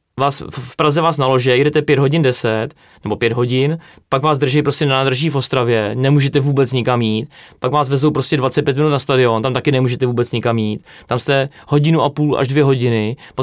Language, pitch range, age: Czech, 120-145 Hz, 20-39